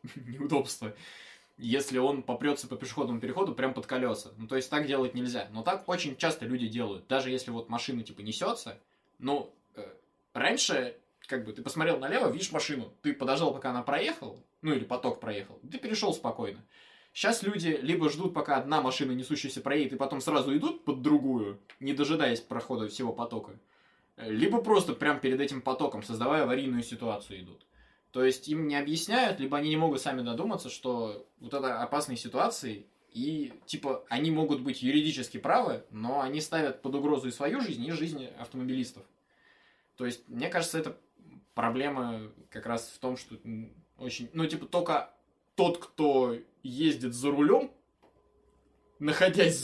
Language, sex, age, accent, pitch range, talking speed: Russian, male, 20-39, native, 125-160 Hz, 160 wpm